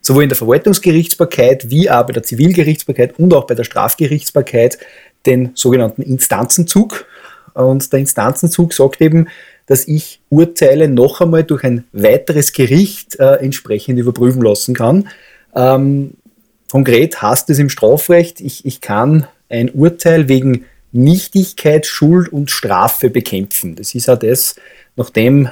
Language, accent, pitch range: German, Austrian, 125-165 Hz